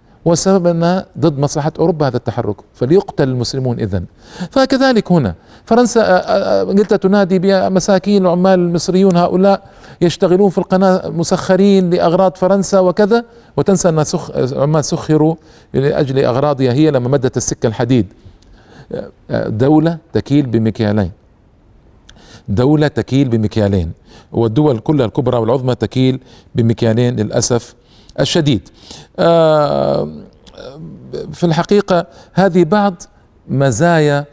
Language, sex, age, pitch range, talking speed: Arabic, male, 50-69, 115-165 Hz, 100 wpm